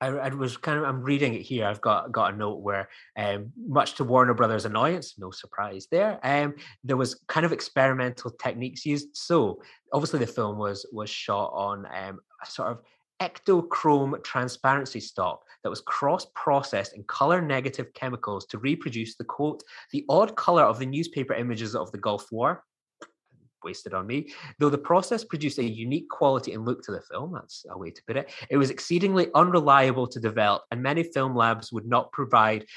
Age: 20-39